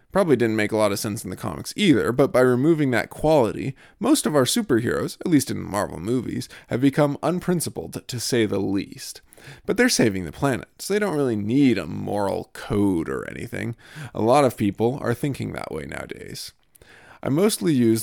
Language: English